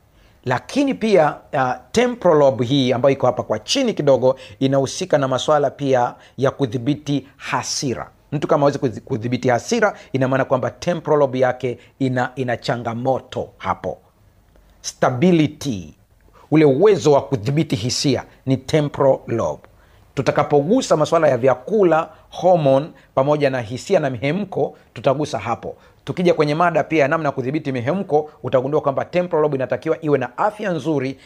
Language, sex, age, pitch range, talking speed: Swahili, male, 40-59, 125-155 Hz, 140 wpm